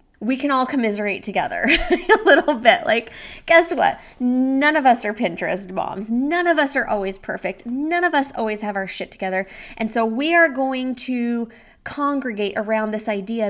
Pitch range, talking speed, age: 195-255 Hz, 180 wpm, 20-39